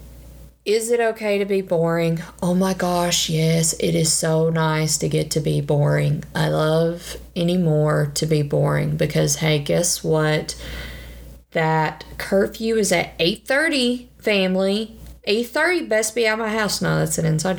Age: 30-49